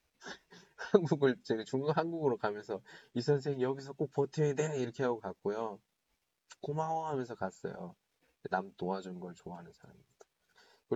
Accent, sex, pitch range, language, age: Korean, male, 95-125 Hz, Chinese, 20-39